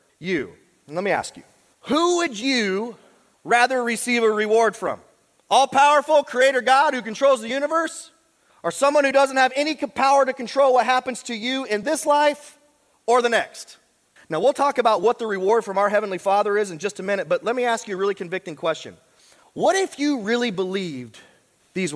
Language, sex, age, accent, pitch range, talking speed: English, male, 30-49, American, 215-275 Hz, 195 wpm